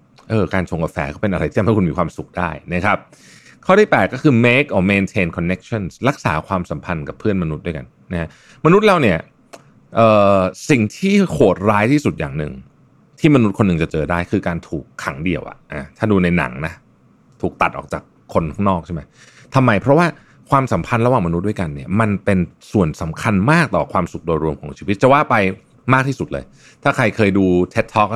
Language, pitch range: Thai, 85-115 Hz